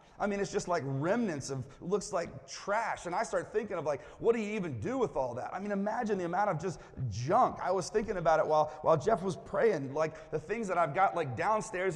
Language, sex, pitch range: English, male, 115-175 Hz